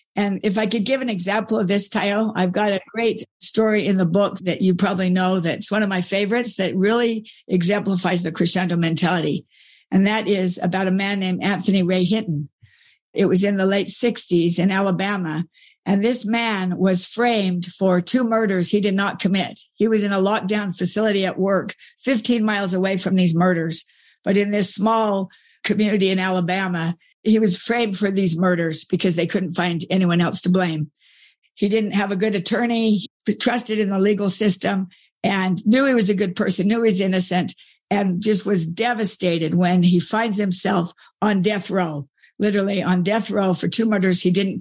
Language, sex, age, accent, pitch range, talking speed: English, female, 60-79, American, 180-215 Hz, 190 wpm